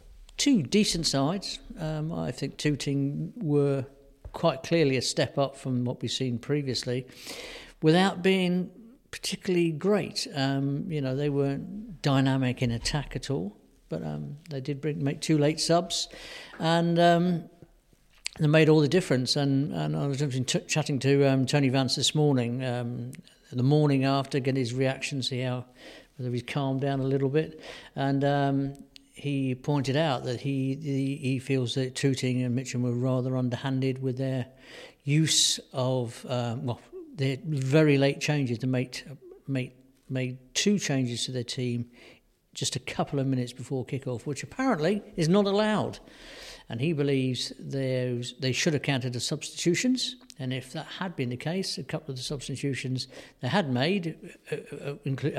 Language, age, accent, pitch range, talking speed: English, 50-69, British, 130-155 Hz, 165 wpm